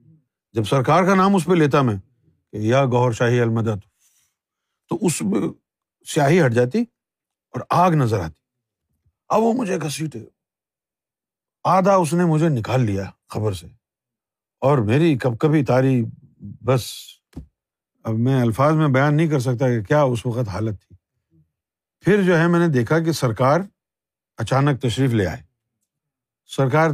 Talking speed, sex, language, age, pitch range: 150 wpm, male, Urdu, 50-69, 115-165 Hz